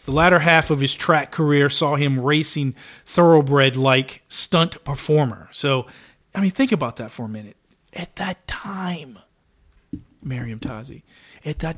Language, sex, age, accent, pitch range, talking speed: English, male, 40-59, American, 130-175 Hz, 150 wpm